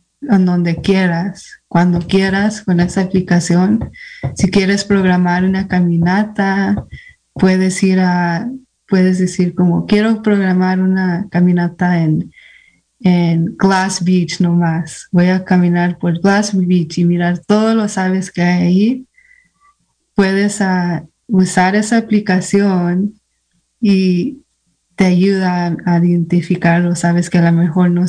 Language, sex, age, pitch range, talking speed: English, female, 20-39, 175-195 Hz, 125 wpm